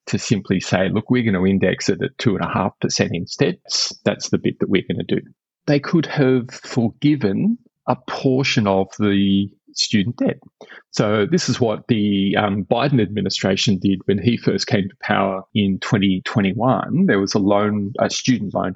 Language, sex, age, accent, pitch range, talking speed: English, male, 30-49, Australian, 95-120 Hz, 165 wpm